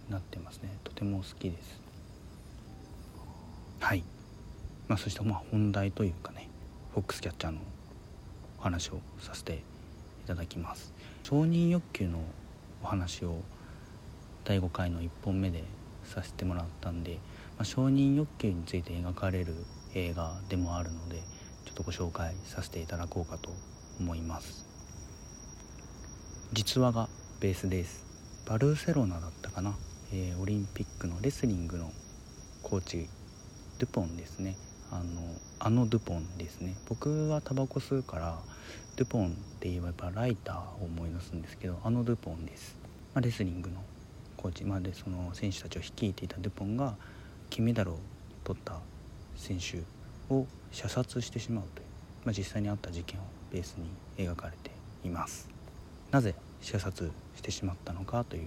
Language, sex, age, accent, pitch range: Japanese, male, 40-59, native, 85-105 Hz